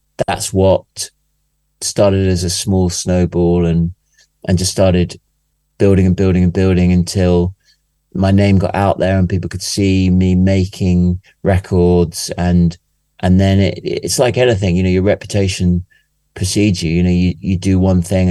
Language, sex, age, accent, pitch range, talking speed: English, male, 30-49, British, 90-105 Hz, 160 wpm